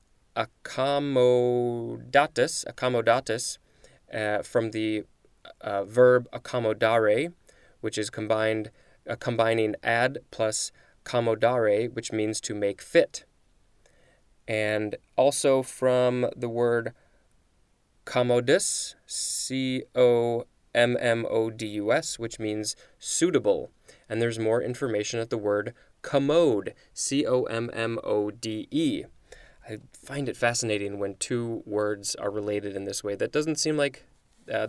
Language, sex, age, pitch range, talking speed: English, male, 20-39, 110-125 Hz, 120 wpm